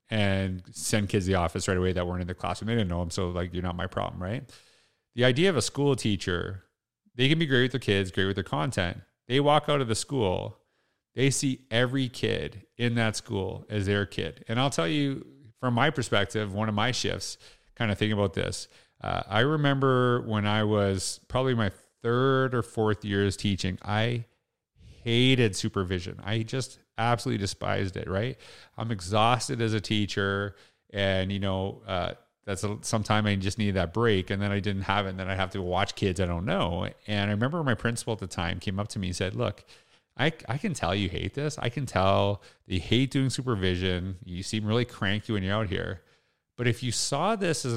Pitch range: 100-125 Hz